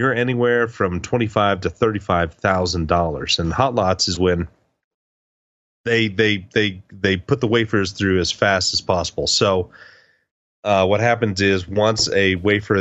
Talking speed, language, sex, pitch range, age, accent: 165 wpm, English, male, 90-110 Hz, 30-49, American